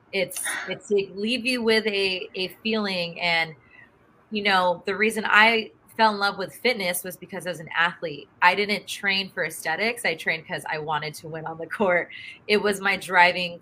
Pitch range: 175-210 Hz